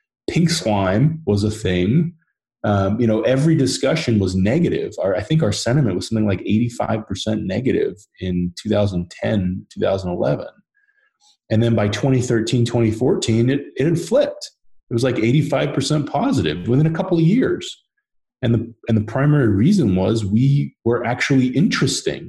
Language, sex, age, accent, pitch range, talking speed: English, male, 30-49, American, 95-135 Hz, 150 wpm